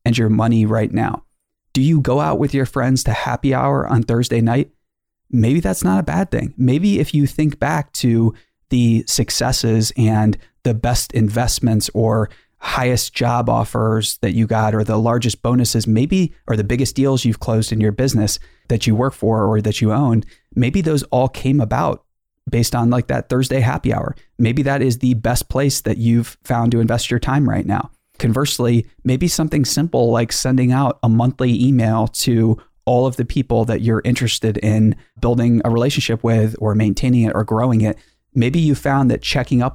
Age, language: 20-39, English